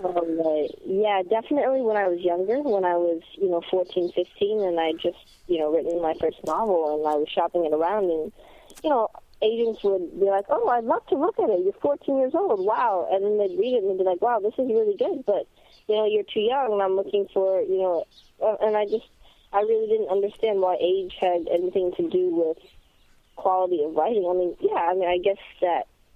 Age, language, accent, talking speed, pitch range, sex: 20-39, English, American, 230 wpm, 175-225 Hz, female